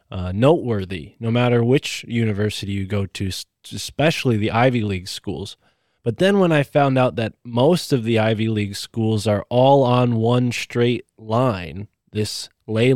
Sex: male